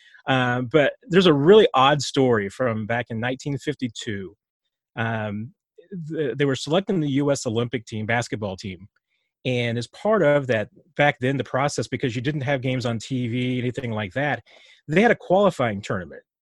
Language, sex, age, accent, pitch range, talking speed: English, male, 30-49, American, 120-150 Hz, 170 wpm